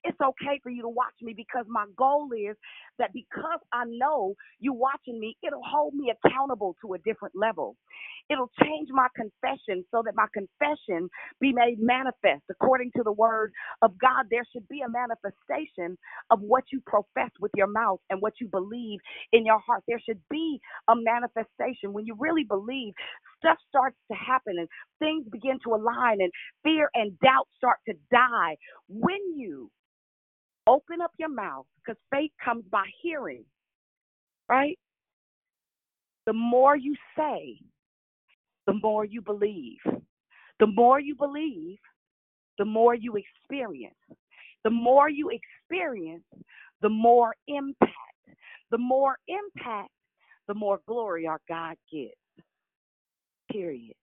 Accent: American